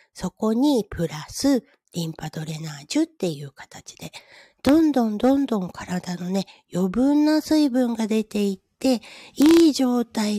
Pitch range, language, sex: 180-265 Hz, Japanese, female